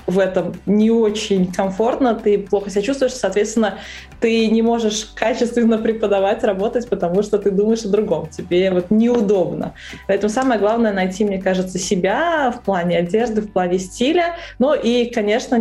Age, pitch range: 20-39, 185-225 Hz